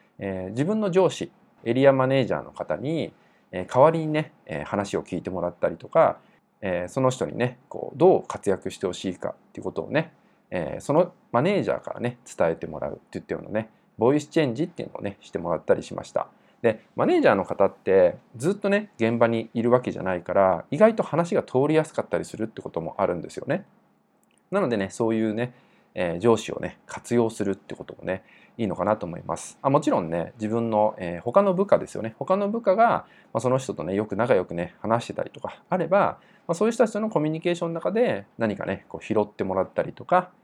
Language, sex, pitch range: Japanese, male, 105-160 Hz